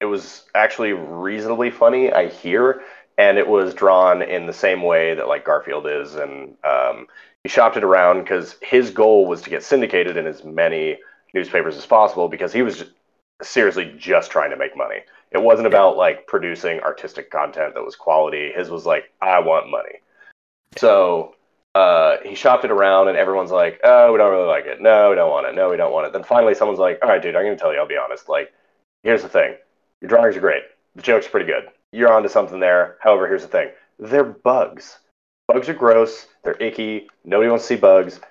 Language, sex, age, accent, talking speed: English, male, 30-49, American, 215 wpm